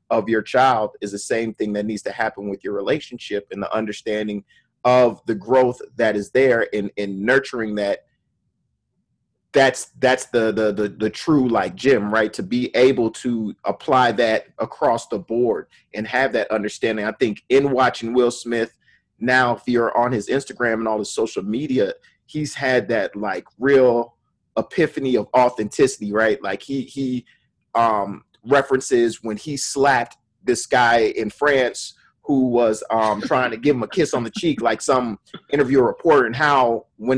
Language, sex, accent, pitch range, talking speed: English, male, American, 110-135 Hz, 175 wpm